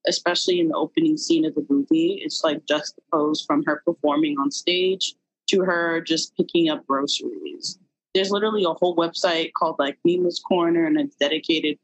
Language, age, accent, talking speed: English, 20-39, American, 170 wpm